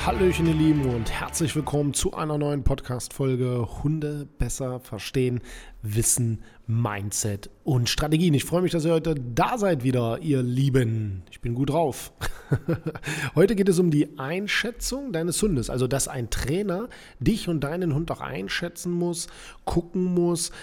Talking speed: 155 wpm